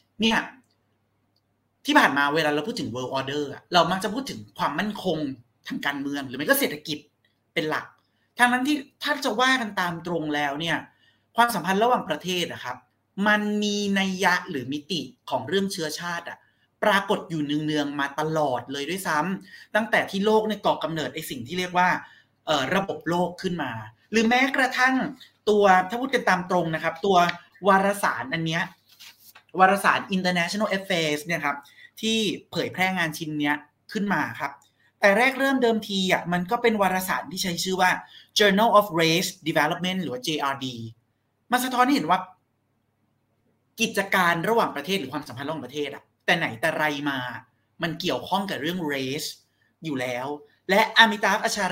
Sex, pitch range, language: male, 145-210 Hz, Thai